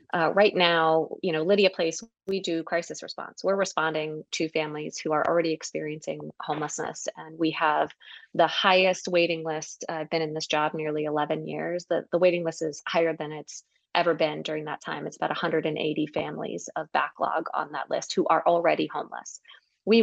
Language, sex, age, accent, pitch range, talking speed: English, female, 30-49, American, 155-185 Hz, 185 wpm